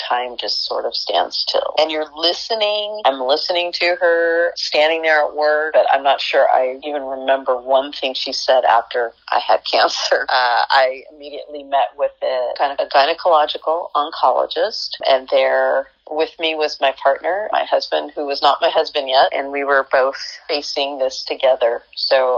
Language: English